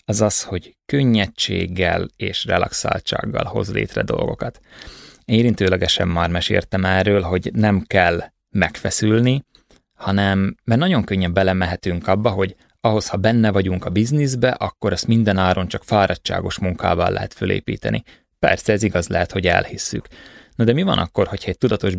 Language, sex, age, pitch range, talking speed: Hungarian, male, 20-39, 90-110 Hz, 145 wpm